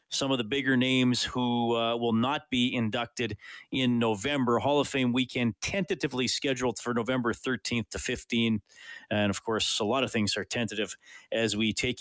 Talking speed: 180 wpm